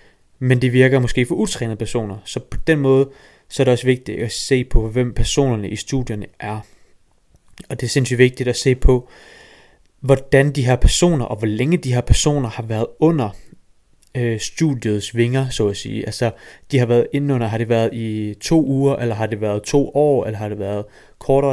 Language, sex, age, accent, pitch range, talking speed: Danish, male, 20-39, native, 110-135 Hz, 205 wpm